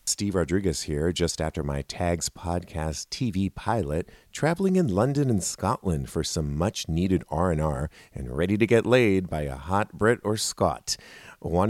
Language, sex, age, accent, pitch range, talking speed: English, male, 40-59, American, 85-115 Hz, 160 wpm